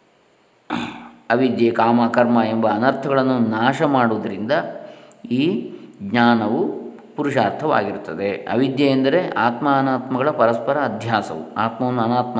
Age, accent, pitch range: 20-39, native, 110-135 Hz